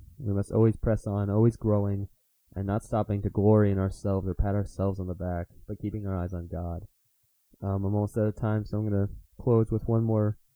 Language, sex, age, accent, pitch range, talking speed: English, male, 20-39, American, 95-115 Hz, 225 wpm